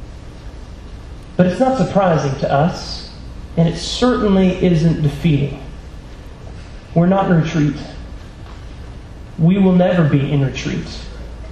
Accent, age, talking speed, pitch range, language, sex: American, 30-49, 110 wpm, 145-180 Hz, English, male